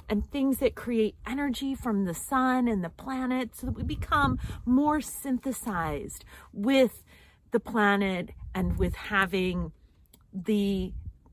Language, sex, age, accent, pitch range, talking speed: English, female, 40-59, American, 195-255 Hz, 125 wpm